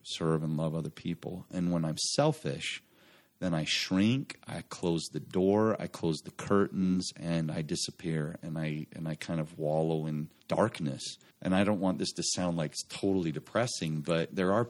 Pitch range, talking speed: 80-95 Hz, 190 wpm